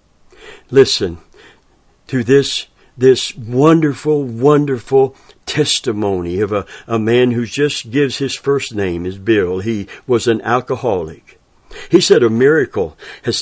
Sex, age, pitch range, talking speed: male, 60-79, 115-140 Hz, 125 wpm